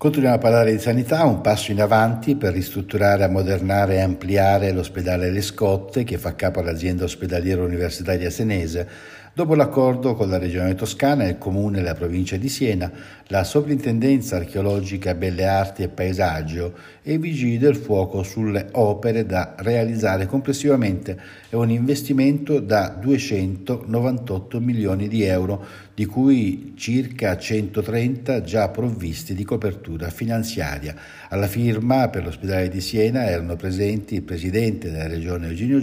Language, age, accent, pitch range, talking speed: Italian, 60-79, native, 95-120 Hz, 140 wpm